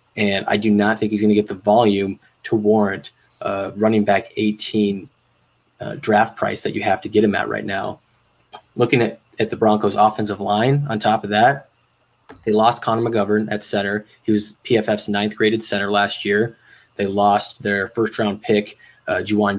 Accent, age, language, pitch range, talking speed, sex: American, 20-39, English, 100-110 Hz, 185 wpm, male